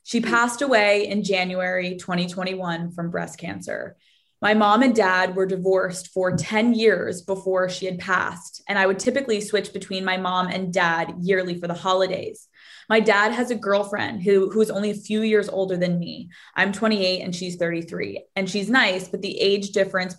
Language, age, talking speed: English, 20-39, 185 wpm